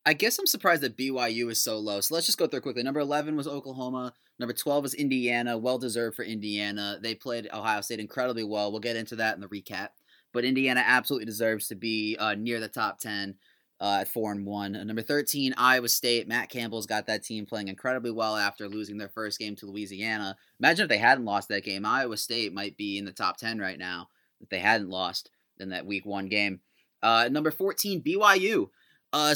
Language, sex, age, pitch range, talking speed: English, male, 20-39, 105-140 Hz, 215 wpm